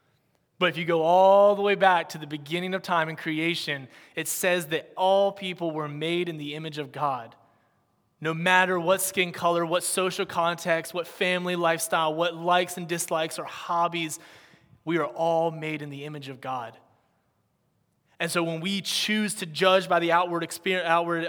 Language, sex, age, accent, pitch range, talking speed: English, male, 20-39, American, 155-180 Hz, 185 wpm